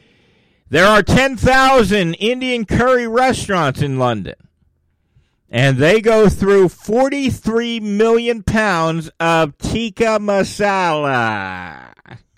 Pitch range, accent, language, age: 125-190 Hz, American, English, 50-69